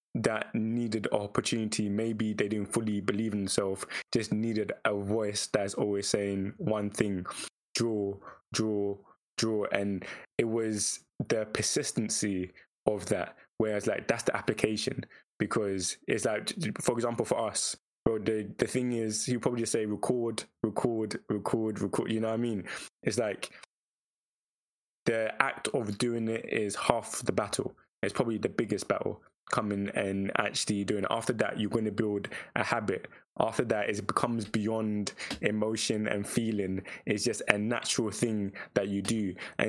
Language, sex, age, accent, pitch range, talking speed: English, male, 20-39, British, 100-115 Hz, 155 wpm